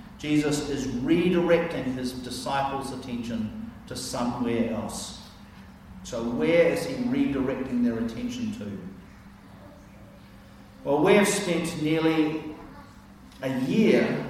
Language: English